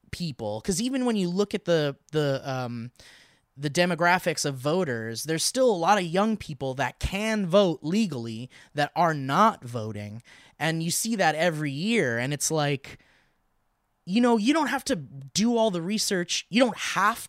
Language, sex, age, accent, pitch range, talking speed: English, male, 20-39, American, 135-200 Hz, 175 wpm